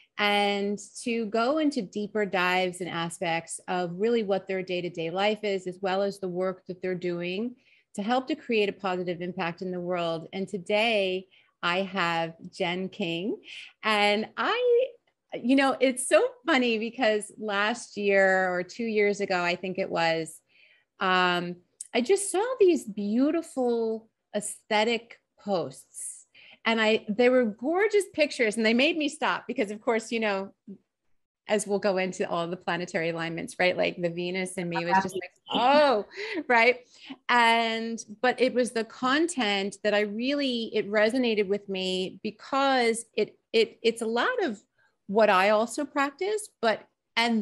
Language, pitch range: English, 185-240 Hz